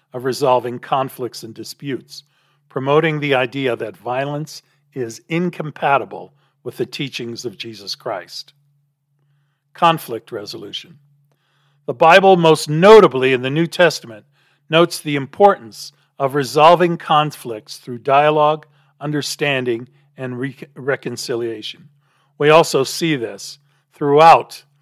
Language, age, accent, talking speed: English, 50-69, American, 110 wpm